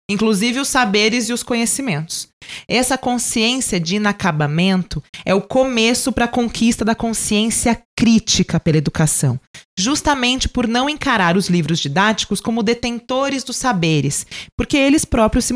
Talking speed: 140 wpm